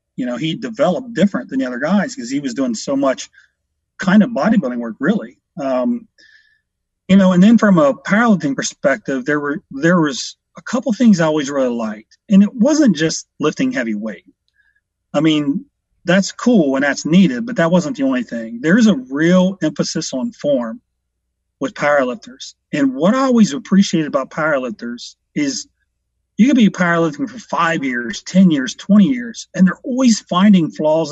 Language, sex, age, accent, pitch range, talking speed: English, male, 40-59, American, 150-245 Hz, 180 wpm